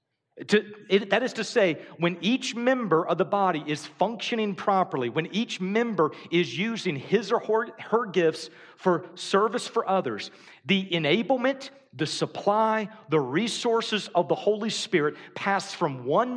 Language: English